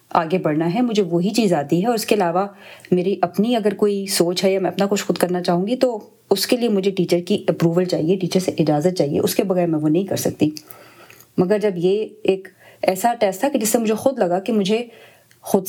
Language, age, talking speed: Urdu, 30-49, 165 wpm